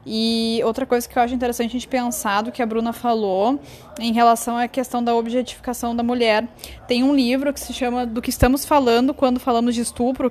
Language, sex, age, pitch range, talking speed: Portuguese, female, 10-29, 225-265 Hz, 215 wpm